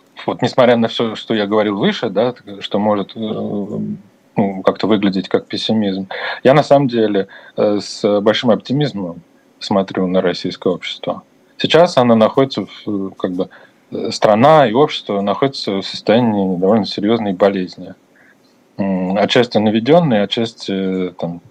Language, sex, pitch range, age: Russian, male, 95-120 Hz, 20-39